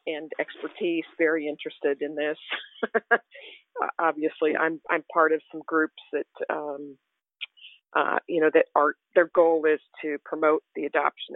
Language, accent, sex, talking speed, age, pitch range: English, American, female, 145 wpm, 50-69, 160-195 Hz